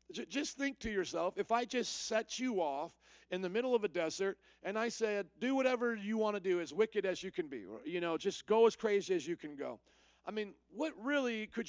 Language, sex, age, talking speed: English, male, 50-69, 240 wpm